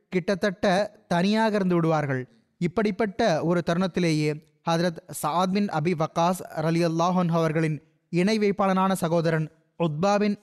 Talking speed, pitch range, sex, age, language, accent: 100 wpm, 160-190 Hz, male, 20-39, Tamil, native